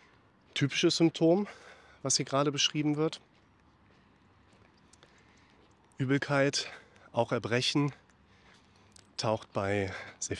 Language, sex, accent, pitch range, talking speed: German, male, German, 105-125 Hz, 75 wpm